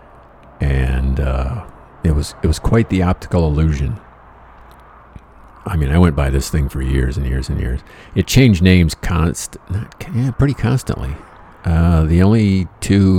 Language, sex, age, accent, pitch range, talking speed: English, male, 50-69, American, 75-95 Hz, 160 wpm